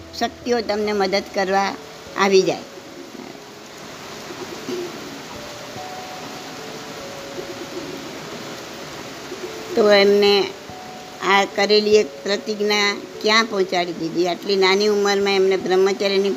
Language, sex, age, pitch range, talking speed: Gujarati, male, 60-79, 195-250 Hz, 75 wpm